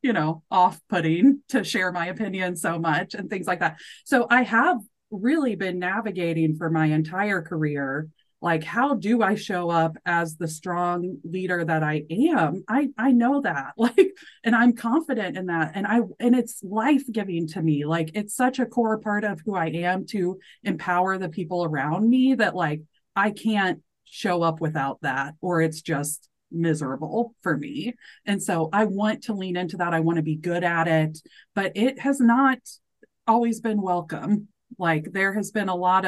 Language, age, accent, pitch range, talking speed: English, 30-49, American, 160-215 Hz, 190 wpm